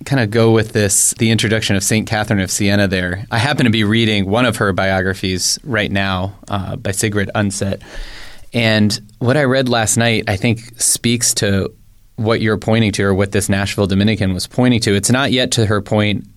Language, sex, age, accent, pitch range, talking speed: English, male, 20-39, American, 100-120 Hz, 205 wpm